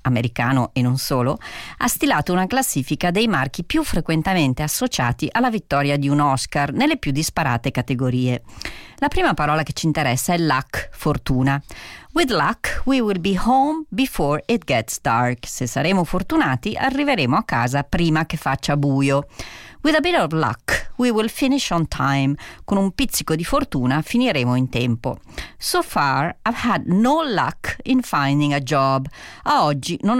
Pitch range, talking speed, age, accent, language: 135-220 Hz, 165 wpm, 40-59, native, Italian